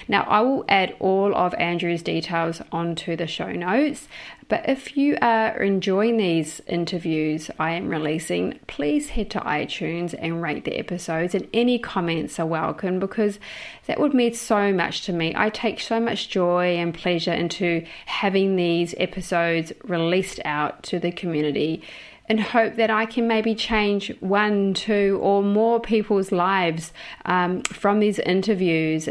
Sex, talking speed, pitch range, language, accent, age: female, 155 wpm, 170-215 Hz, English, Australian, 30-49